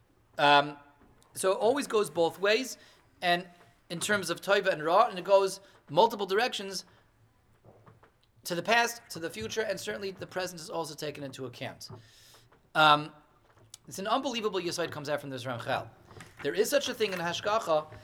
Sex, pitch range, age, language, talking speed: male, 135-195 Hz, 30-49, English, 170 wpm